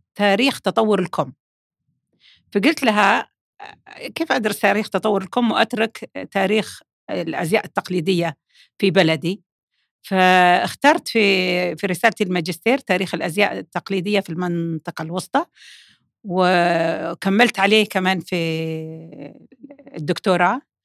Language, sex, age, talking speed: Arabic, female, 50-69, 90 wpm